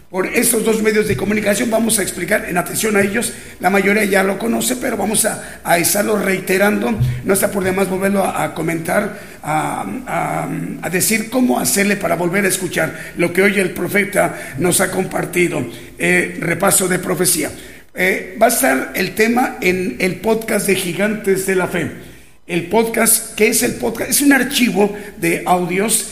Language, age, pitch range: Spanish, 50-69, 175-215 Hz